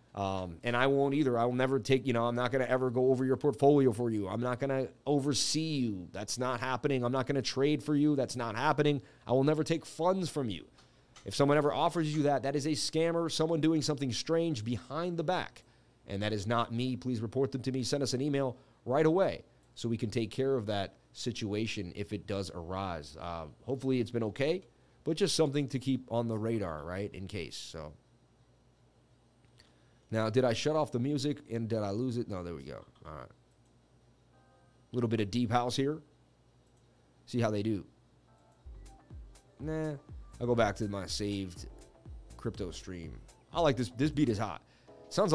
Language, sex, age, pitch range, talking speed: English, male, 30-49, 115-145 Hz, 205 wpm